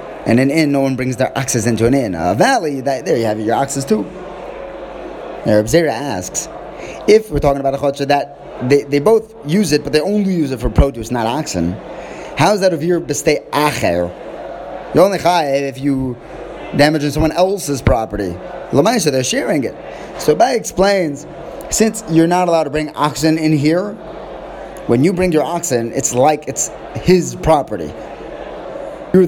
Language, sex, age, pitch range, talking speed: English, male, 30-49, 135-175 Hz, 180 wpm